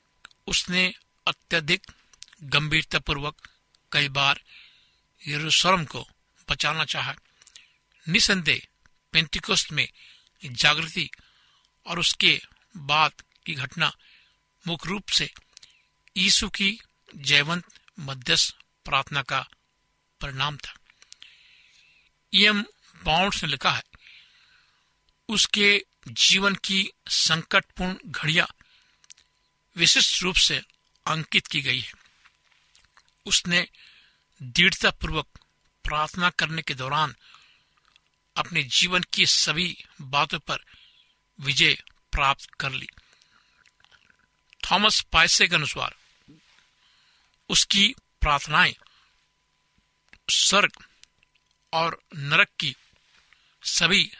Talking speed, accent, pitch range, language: 80 wpm, native, 145-195 Hz, Hindi